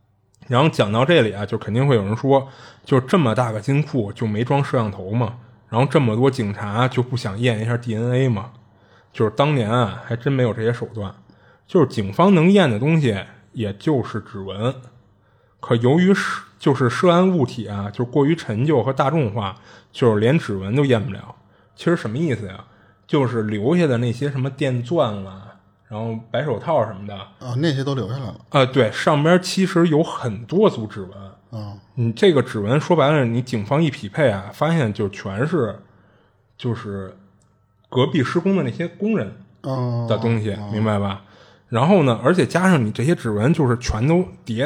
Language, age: Chinese, 20-39